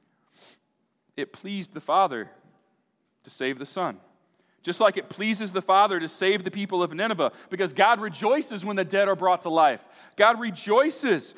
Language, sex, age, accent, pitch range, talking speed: English, male, 40-59, American, 175-225 Hz, 170 wpm